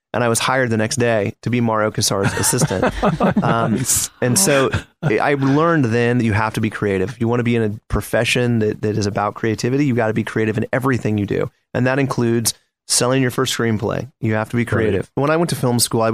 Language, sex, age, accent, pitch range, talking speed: English, male, 30-49, American, 105-125 Hz, 240 wpm